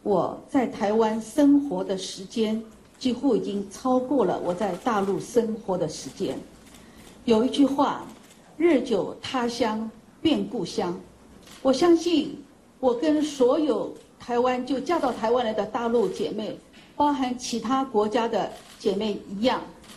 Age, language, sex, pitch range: 50-69, Chinese, female, 220-280 Hz